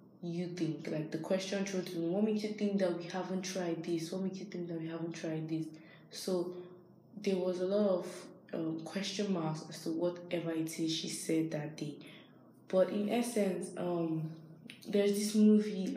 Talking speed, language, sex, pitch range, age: 180 wpm, English, female, 165-190 Hz, 20-39